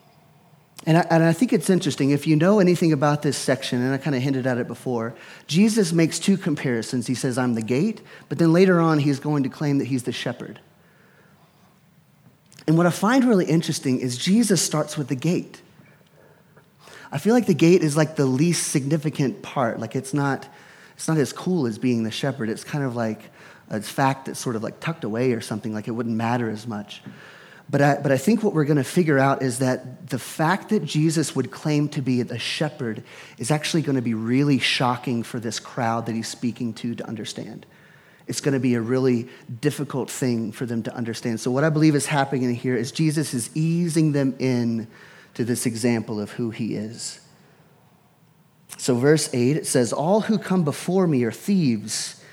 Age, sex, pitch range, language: 30-49, male, 125-160 Hz, English